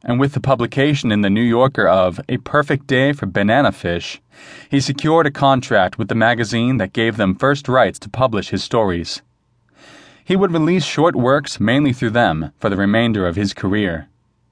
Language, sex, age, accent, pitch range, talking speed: English, male, 30-49, American, 100-135 Hz, 185 wpm